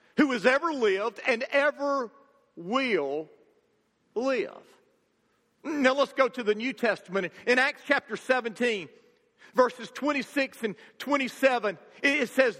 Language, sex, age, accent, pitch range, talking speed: English, male, 40-59, American, 230-310 Hz, 120 wpm